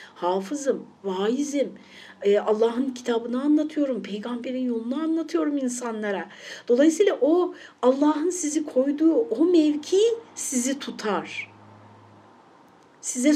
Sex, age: female, 60-79